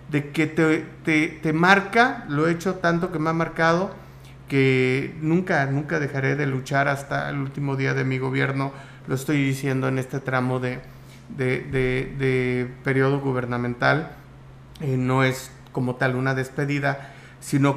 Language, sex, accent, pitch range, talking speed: Spanish, male, Mexican, 130-145 Hz, 160 wpm